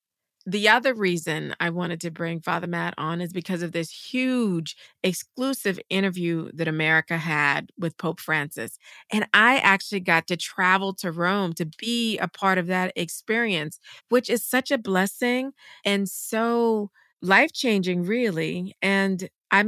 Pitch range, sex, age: 175-210 Hz, female, 40-59